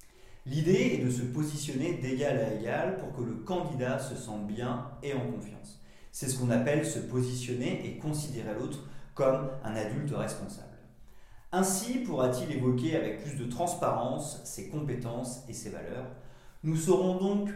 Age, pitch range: 40-59, 115-160 Hz